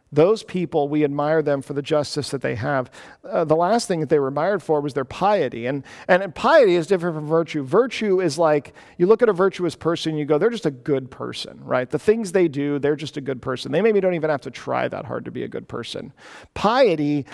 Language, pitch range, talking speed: English, 140-175 Hz, 255 wpm